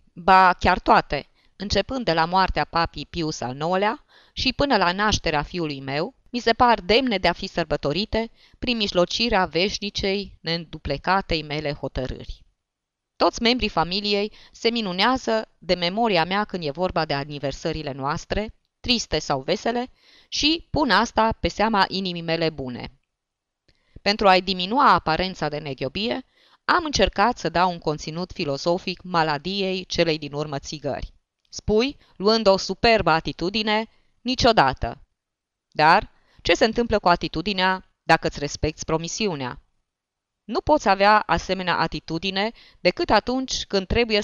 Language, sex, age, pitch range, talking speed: Romanian, female, 20-39, 160-210 Hz, 135 wpm